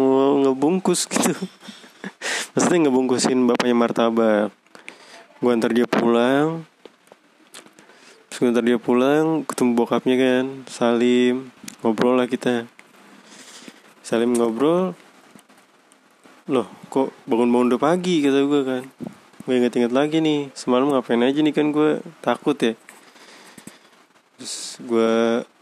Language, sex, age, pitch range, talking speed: Indonesian, male, 20-39, 120-150 Hz, 105 wpm